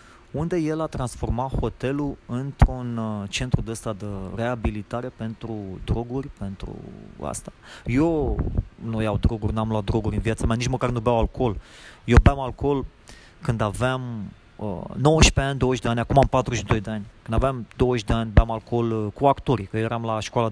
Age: 30-49